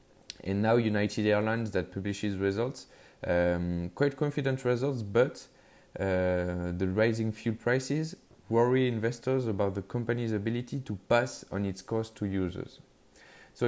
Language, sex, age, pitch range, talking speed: English, male, 20-39, 95-115 Hz, 135 wpm